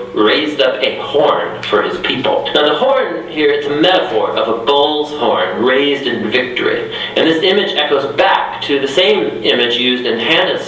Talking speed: 185 wpm